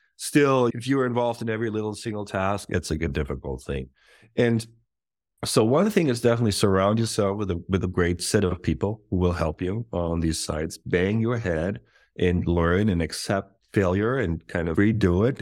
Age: 30-49